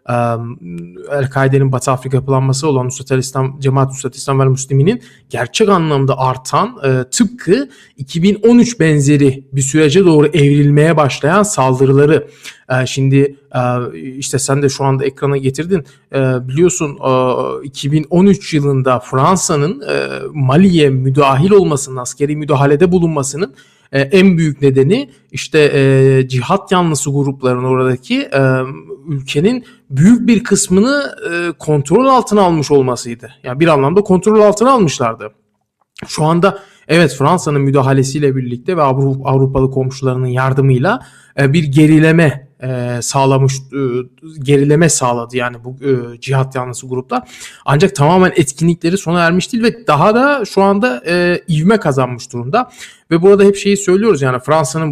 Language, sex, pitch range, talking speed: Turkish, male, 130-170 Hz, 120 wpm